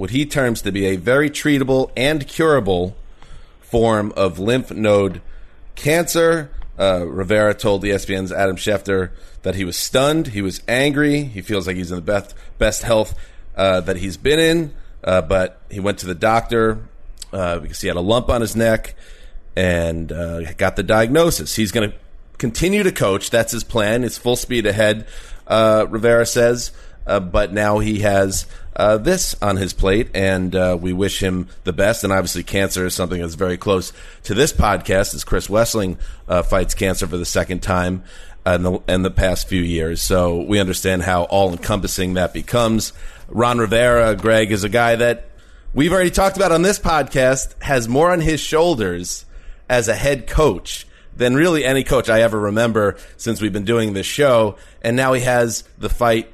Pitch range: 90-120 Hz